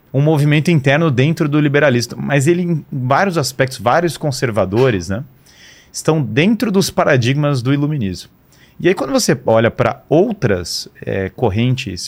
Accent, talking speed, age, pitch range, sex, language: Brazilian, 140 wpm, 30-49, 125-160 Hz, male, Portuguese